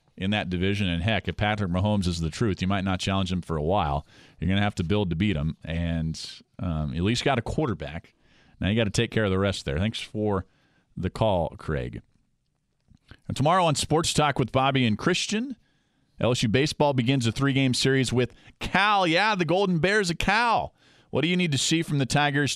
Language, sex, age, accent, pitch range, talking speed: English, male, 40-59, American, 105-140 Hz, 220 wpm